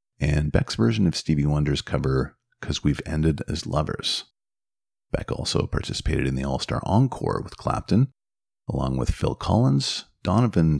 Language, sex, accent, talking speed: English, male, American, 145 wpm